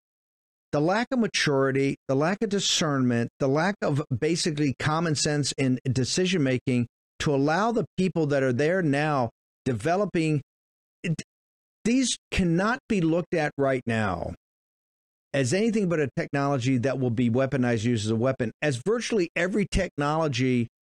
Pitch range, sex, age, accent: 135-175 Hz, male, 50-69, American